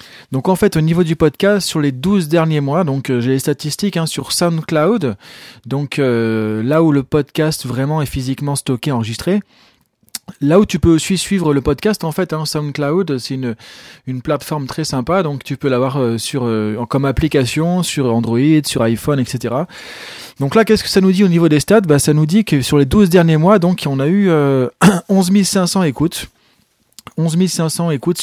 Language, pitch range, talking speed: French, 135-175 Hz, 200 wpm